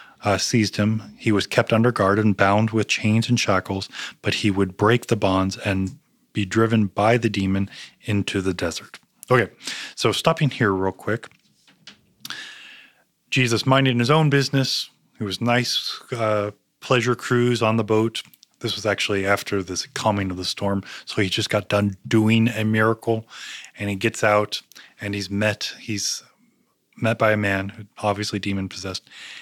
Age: 30-49